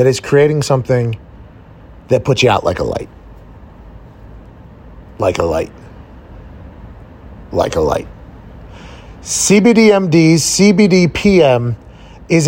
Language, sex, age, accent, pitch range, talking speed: English, male, 30-49, American, 135-185 Hz, 95 wpm